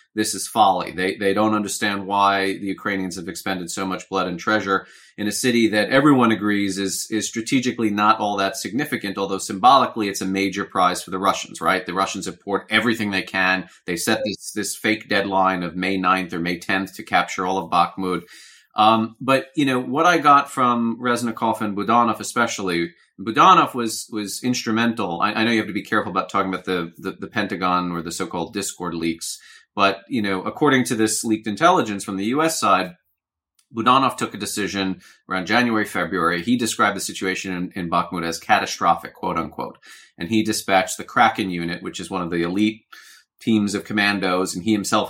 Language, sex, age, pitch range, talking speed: English, male, 30-49, 95-110 Hz, 195 wpm